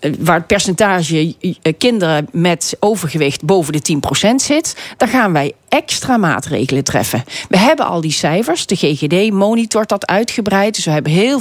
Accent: Dutch